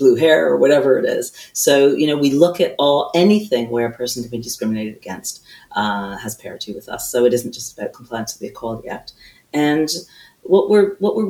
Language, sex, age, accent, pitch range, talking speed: English, female, 40-59, American, 115-145 Hz, 220 wpm